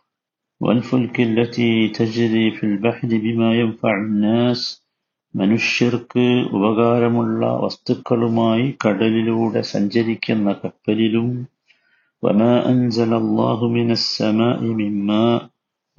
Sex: male